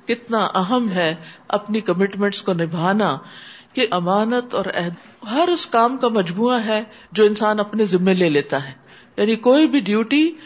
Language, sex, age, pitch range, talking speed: Urdu, female, 50-69, 195-255 Hz, 165 wpm